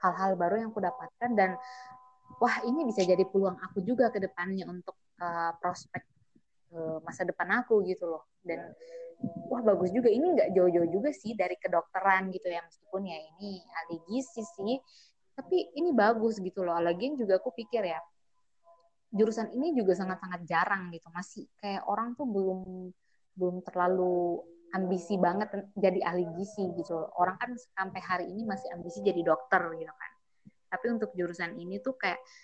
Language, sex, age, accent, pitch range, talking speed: Indonesian, female, 20-39, native, 180-225 Hz, 165 wpm